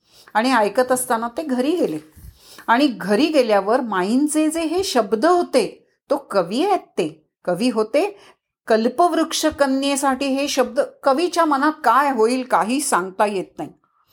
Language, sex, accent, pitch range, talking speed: Marathi, female, native, 215-290 Hz, 135 wpm